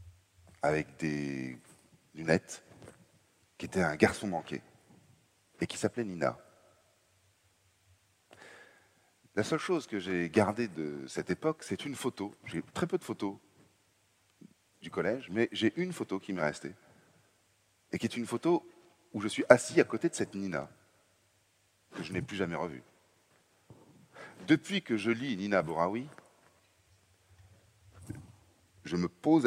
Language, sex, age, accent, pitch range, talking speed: French, male, 40-59, French, 95-115 Hz, 130 wpm